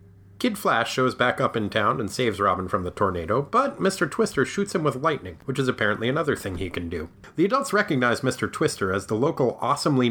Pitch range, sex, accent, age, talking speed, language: 105-145 Hz, male, American, 30-49, 220 wpm, English